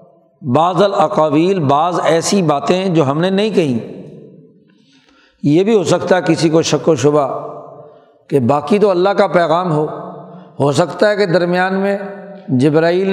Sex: male